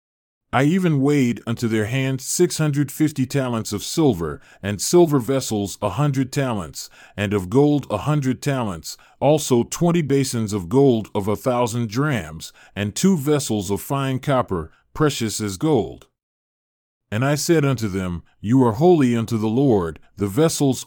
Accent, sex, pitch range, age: American, male, 105-145 Hz, 40-59